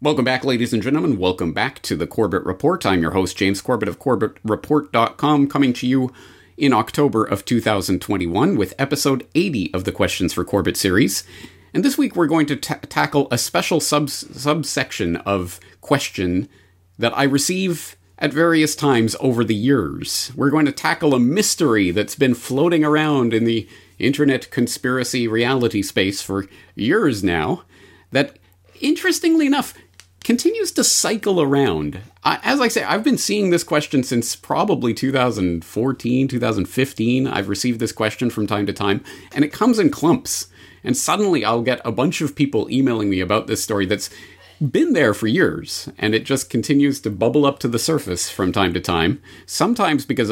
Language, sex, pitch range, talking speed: English, male, 100-145 Hz, 170 wpm